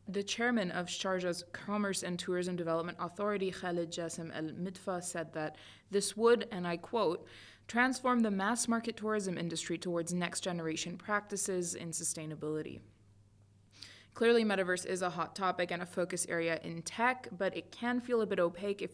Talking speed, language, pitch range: 160 wpm, English, 160-195 Hz